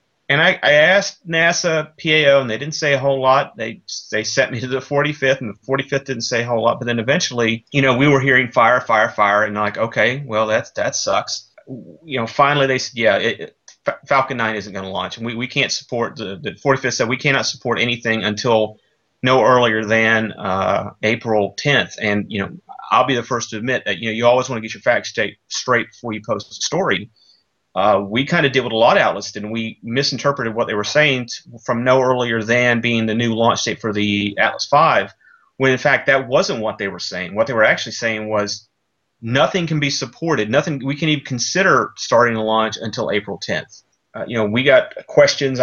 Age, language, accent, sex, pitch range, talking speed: 30-49, English, American, male, 115-135 Hz, 225 wpm